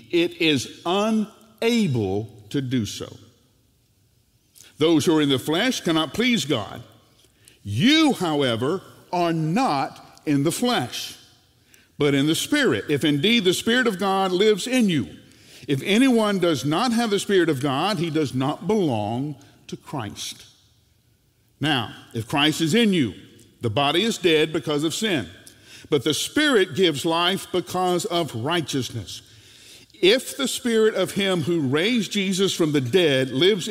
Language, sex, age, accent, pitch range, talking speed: English, male, 50-69, American, 115-175 Hz, 150 wpm